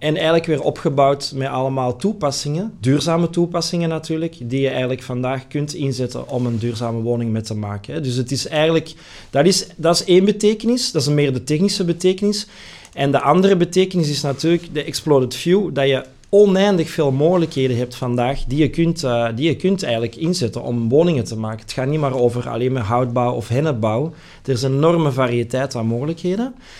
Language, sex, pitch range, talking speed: Dutch, male, 125-165 Hz, 180 wpm